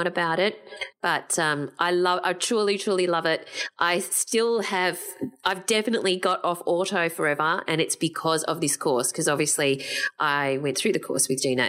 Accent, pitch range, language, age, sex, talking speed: Australian, 150-190 Hz, English, 30-49, female, 180 wpm